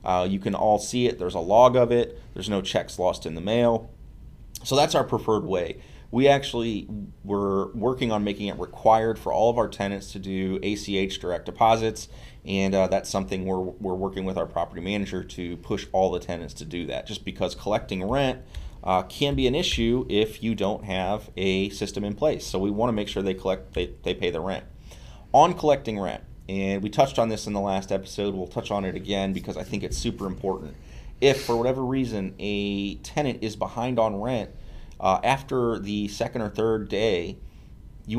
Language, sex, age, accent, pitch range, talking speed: English, male, 30-49, American, 95-120 Hz, 205 wpm